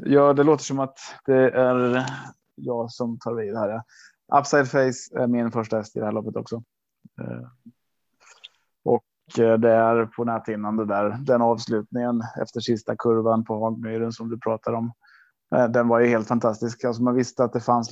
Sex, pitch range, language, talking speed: male, 115-130 Hz, Swedish, 180 wpm